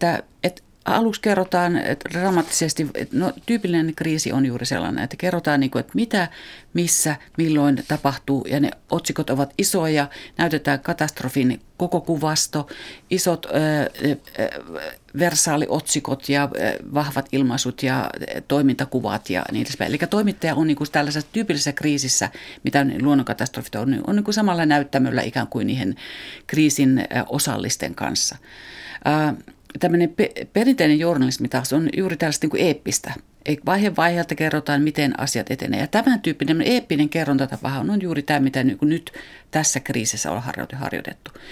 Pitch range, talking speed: 135-170 Hz, 135 wpm